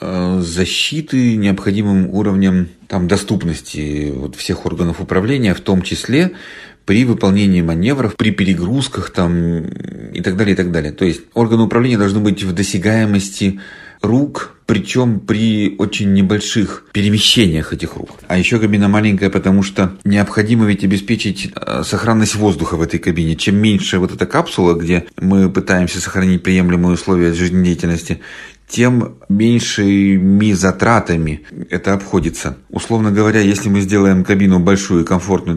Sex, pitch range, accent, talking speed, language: male, 90-105 Hz, native, 125 wpm, Russian